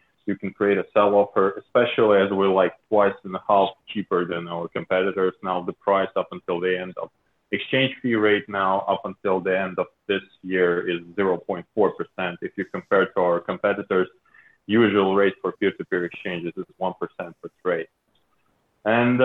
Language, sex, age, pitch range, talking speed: English, male, 30-49, 95-115 Hz, 180 wpm